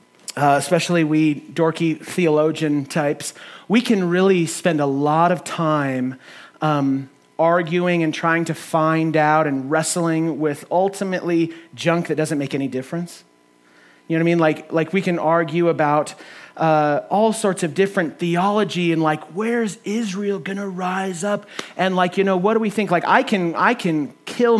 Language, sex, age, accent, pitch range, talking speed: English, male, 30-49, American, 155-190 Hz, 170 wpm